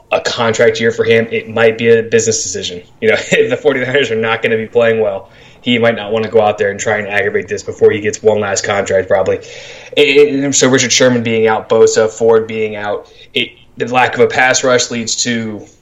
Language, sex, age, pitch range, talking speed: English, male, 20-39, 110-150 Hz, 230 wpm